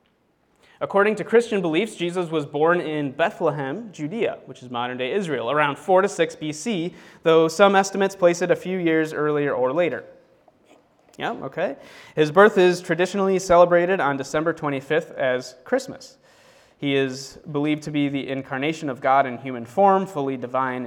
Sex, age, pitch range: male, 30-49, 135-180 Hz